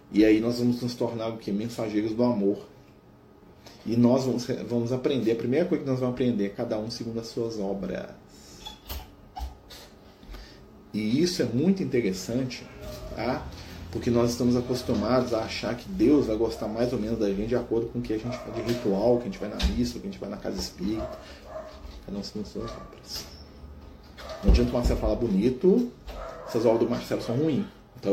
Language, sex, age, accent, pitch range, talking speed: Portuguese, male, 40-59, Brazilian, 110-155 Hz, 195 wpm